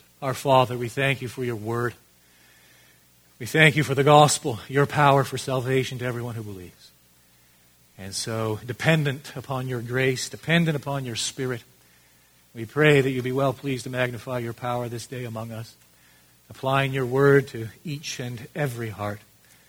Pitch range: 100-135 Hz